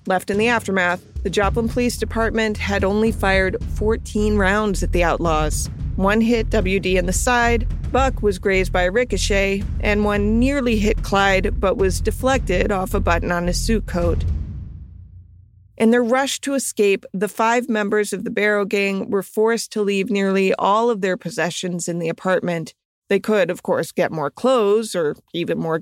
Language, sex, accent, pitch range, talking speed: English, female, American, 185-225 Hz, 180 wpm